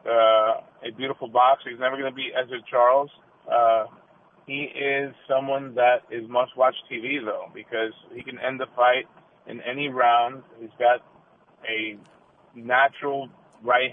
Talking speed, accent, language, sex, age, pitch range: 145 wpm, American, English, male, 30-49, 125-145 Hz